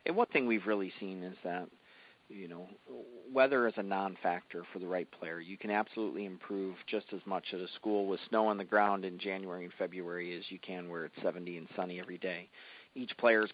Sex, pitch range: male, 90-105 Hz